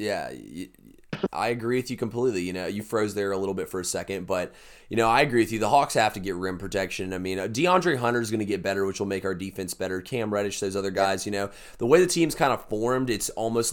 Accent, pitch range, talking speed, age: American, 100-120 Hz, 270 wpm, 20-39